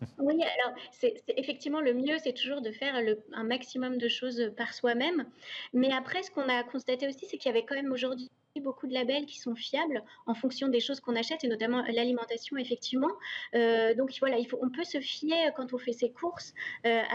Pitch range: 235-275 Hz